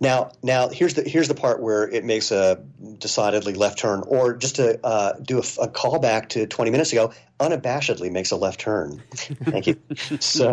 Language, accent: English, American